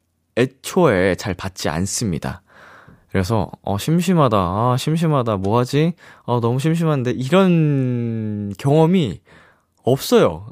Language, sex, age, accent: Korean, male, 20-39, native